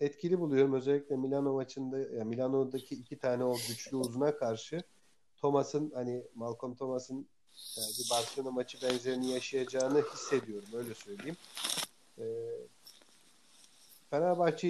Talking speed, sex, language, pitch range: 110 wpm, male, Turkish, 120-140 Hz